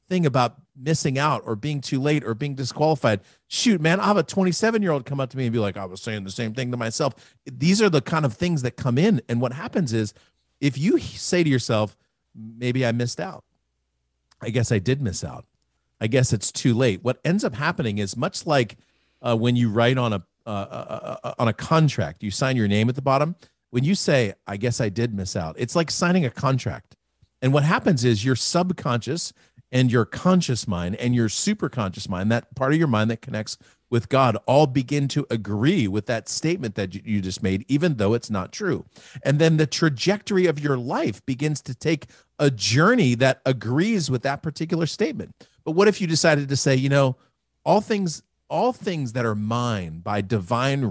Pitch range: 110-155 Hz